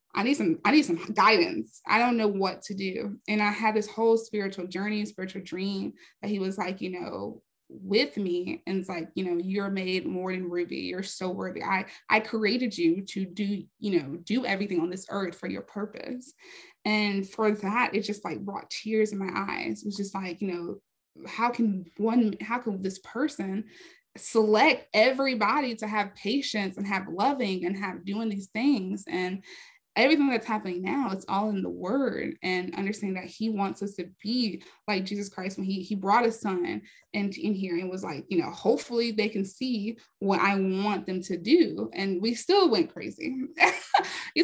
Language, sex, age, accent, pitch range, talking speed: English, female, 20-39, American, 190-230 Hz, 200 wpm